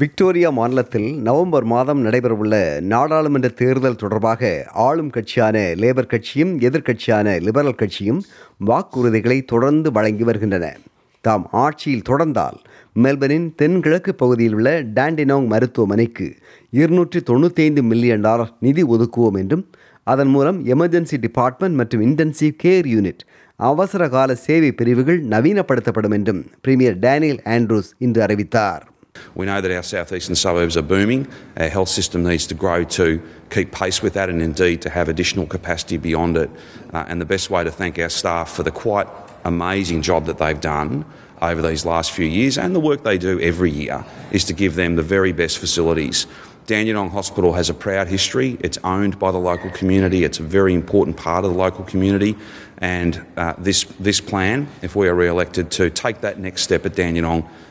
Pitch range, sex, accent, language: 90-130 Hz, male, native, Tamil